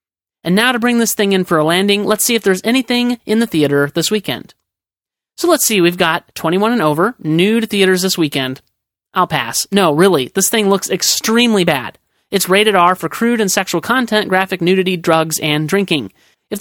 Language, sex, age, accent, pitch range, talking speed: English, male, 30-49, American, 160-215 Hz, 200 wpm